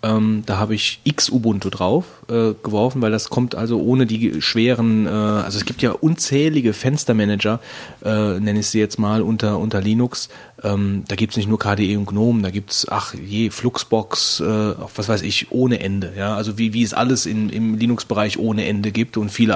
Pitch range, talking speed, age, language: 105-125 Hz, 200 wpm, 30-49, German